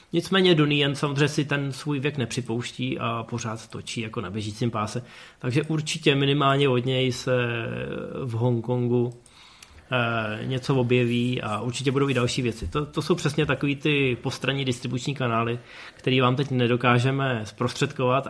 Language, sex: Czech, male